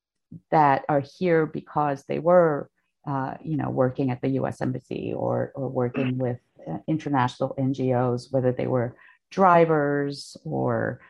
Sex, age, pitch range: female, 50-69, 140-175 Hz